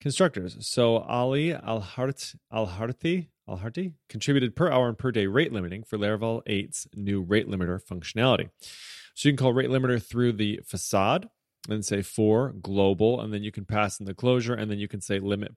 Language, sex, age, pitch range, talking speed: English, male, 30-49, 100-125 Hz, 175 wpm